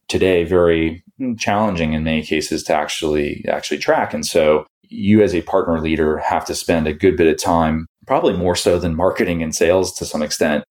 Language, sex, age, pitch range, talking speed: English, male, 20-39, 80-90 Hz, 195 wpm